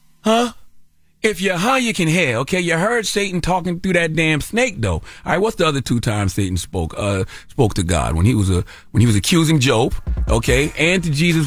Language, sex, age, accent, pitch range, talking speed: English, male, 30-49, American, 100-160 Hz, 230 wpm